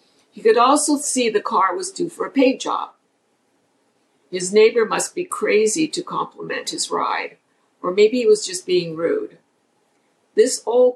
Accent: American